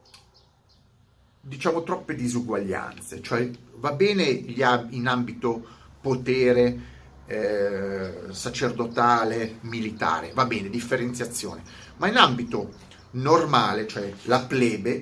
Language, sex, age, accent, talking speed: Italian, male, 40-59, native, 90 wpm